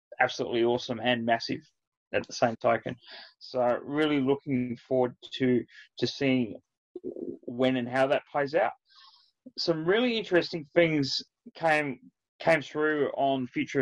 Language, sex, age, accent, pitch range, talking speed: English, male, 20-39, Australian, 125-145 Hz, 130 wpm